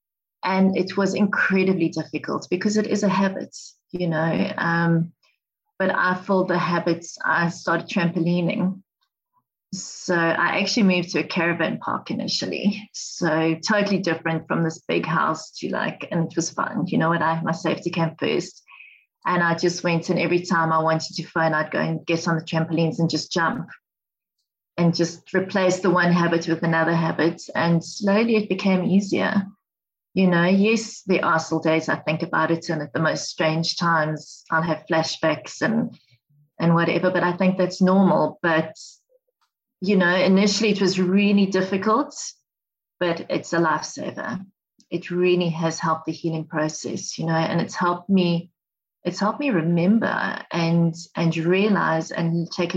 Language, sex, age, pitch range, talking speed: English, female, 30-49, 165-190 Hz, 165 wpm